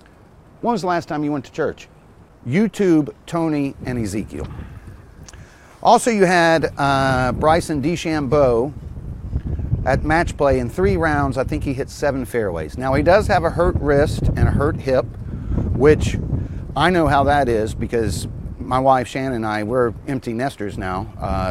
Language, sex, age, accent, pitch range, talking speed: English, male, 50-69, American, 105-140 Hz, 165 wpm